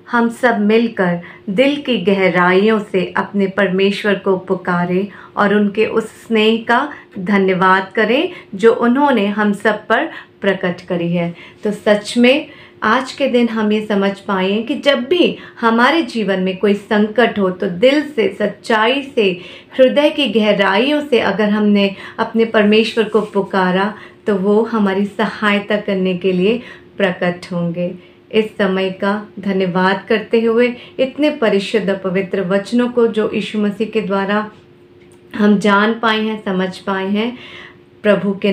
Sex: female